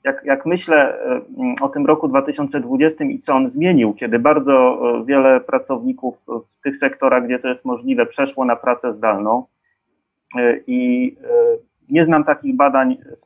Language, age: Polish, 30-49